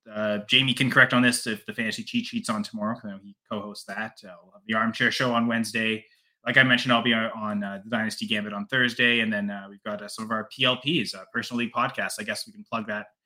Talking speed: 260 wpm